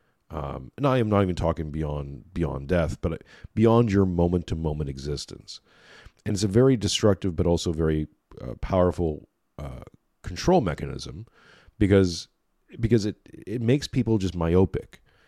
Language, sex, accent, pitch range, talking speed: English, male, American, 80-110 Hz, 150 wpm